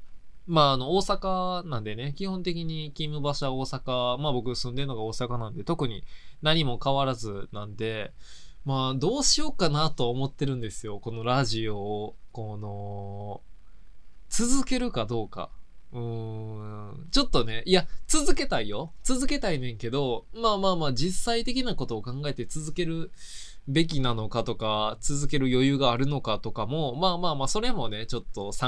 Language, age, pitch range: Japanese, 20-39, 110-180 Hz